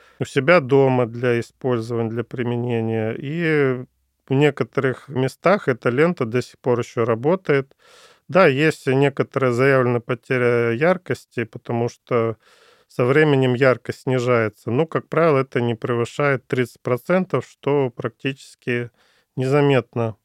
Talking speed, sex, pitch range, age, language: 120 wpm, male, 120-140 Hz, 40-59, Russian